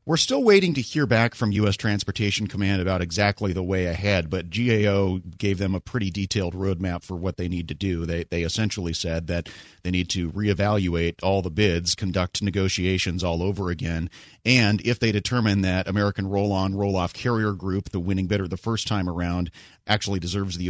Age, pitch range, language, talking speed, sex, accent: 40-59, 90-105 Hz, English, 190 wpm, male, American